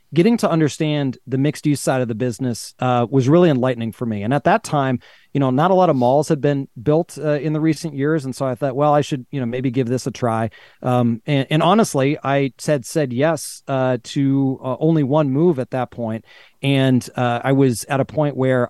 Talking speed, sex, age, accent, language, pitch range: 235 wpm, male, 30-49, American, English, 130-150 Hz